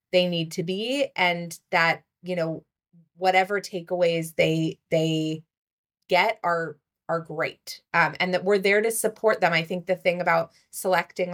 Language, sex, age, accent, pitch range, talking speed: English, female, 20-39, American, 165-185 Hz, 160 wpm